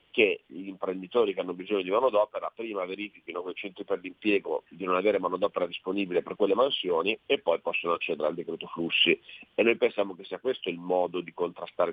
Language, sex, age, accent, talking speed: Italian, male, 40-59, native, 200 wpm